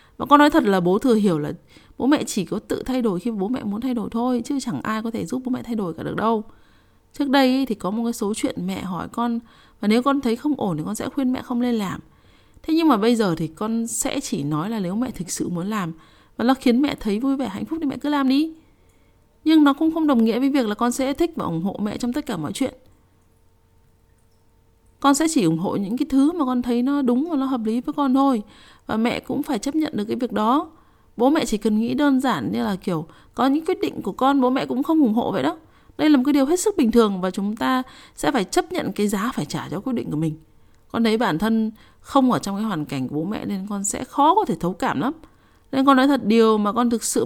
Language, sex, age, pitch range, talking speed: Vietnamese, female, 20-39, 205-275 Hz, 280 wpm